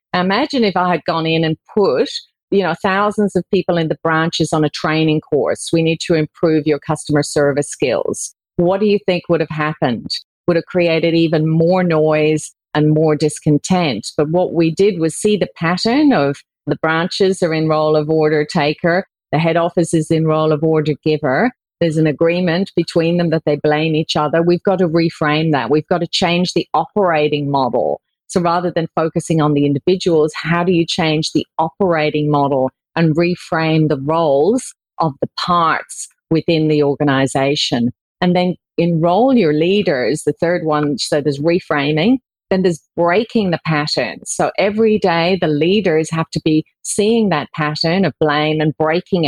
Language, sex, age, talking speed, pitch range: English, female, 40-59, 175 wpm, 150-180 Hz